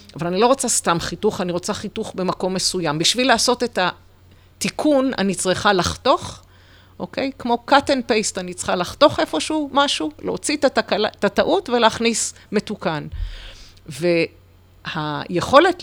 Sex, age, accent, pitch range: female, 40-59, native, 170-235 Hz